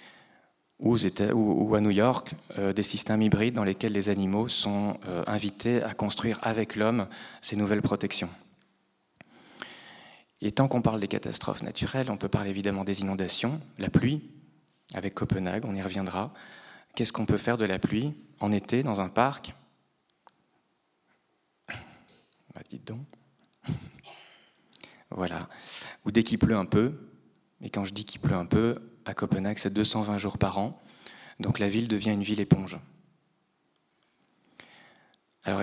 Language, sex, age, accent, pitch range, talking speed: French, male, 30-49, French, 100-115 Hz, 145 wpm